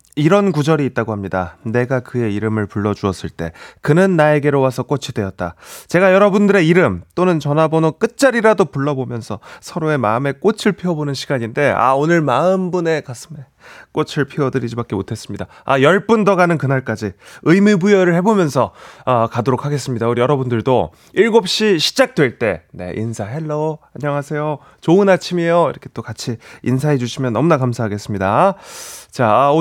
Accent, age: native, 30-49